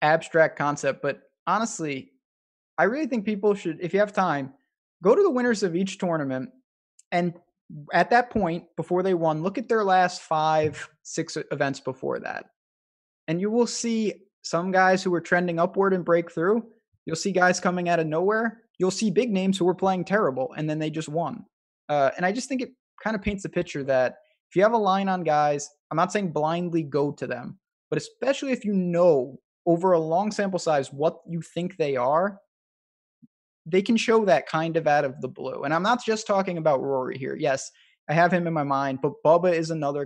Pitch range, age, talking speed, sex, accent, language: 145-195 Hz, 20-39, 210 wpm, male, American, English